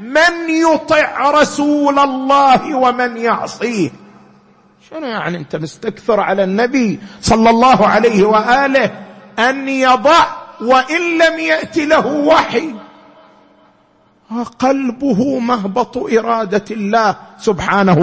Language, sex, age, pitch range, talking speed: Arabic, male, 50-69, 195-265 Hz, 95 wpm